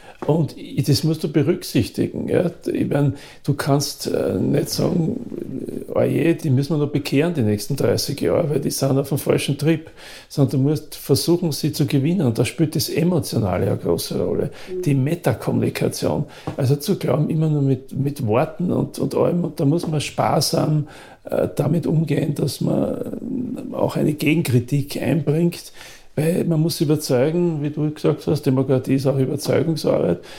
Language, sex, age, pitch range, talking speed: German, male, 40-59, 140-170 Hz, 160 wpm